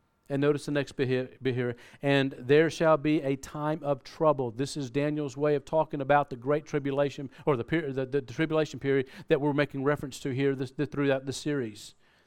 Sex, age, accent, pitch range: male, 40-59, American, 130-155 Hz